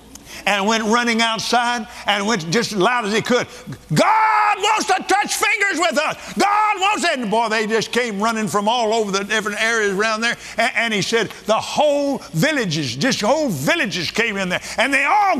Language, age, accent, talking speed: English, 50-69, American, 200 wpm